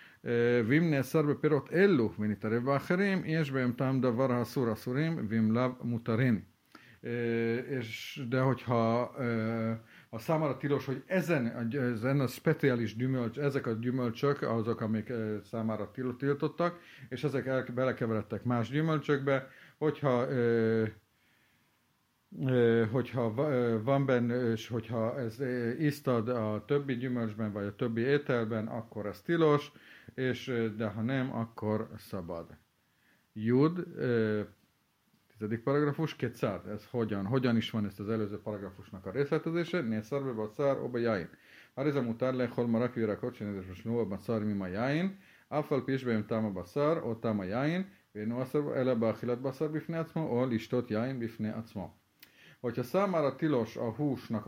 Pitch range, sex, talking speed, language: 110-140 Hz, male, 120 wpm, Hungarian